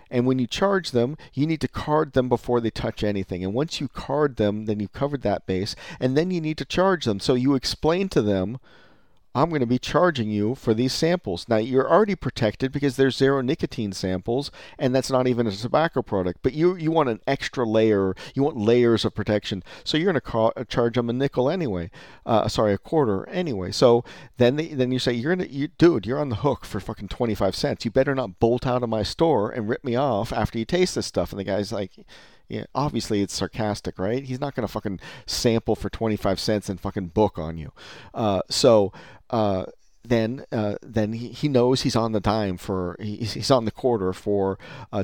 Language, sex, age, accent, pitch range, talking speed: English, male, 40-59, American, 105-130 Hz, 225 wpm